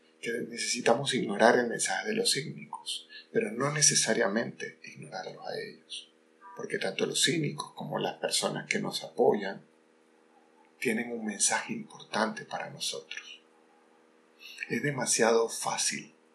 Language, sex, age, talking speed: Spanish, male, 30-49, 120 wpm